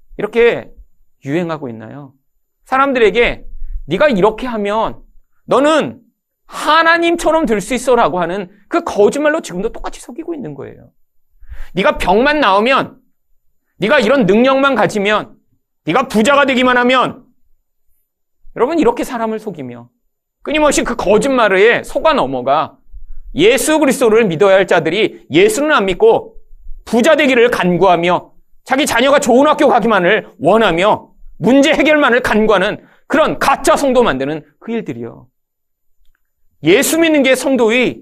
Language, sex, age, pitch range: Korean, male, 40-59, 175-280 Hz